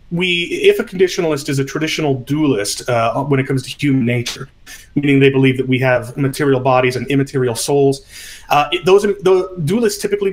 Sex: male